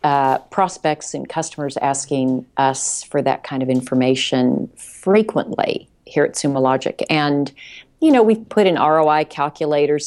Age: 40-59